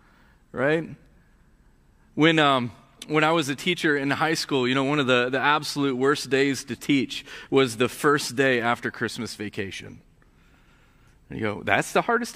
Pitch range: 115-175 Hz